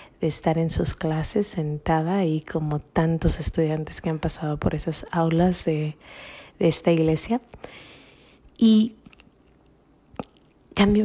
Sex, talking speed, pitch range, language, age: female, 120 wpm, 155-175 Hz, Spanish, 30-49